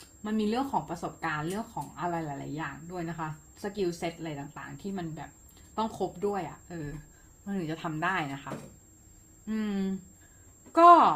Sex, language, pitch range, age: female, Thai, 155-215 Hz, 30-49